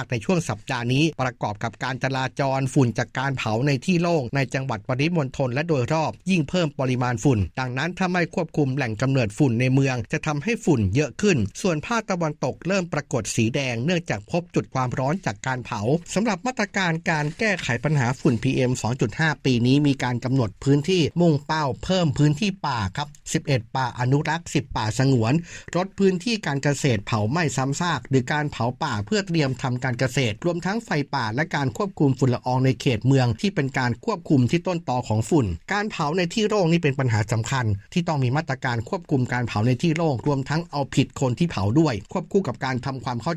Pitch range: 125-165 Hz